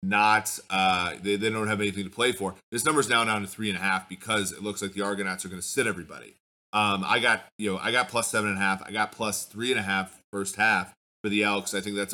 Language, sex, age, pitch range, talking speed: English, male, 30-49, 95-110 Hz, 285 wpm